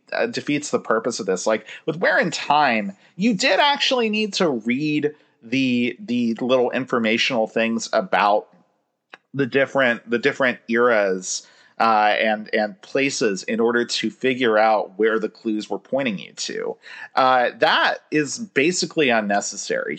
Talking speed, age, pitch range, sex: 145 wpm, 40-59, 110-180 Hz, male